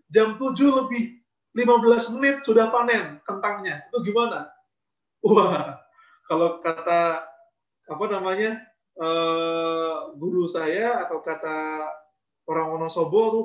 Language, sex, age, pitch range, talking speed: Indonesian, male, 20-39, 170-240 Hz, 105 wpm